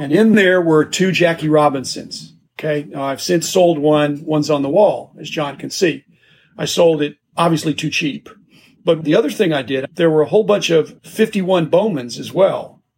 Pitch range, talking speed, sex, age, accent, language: 150-200 Hz, 195 wpm, male, 40-59, American, English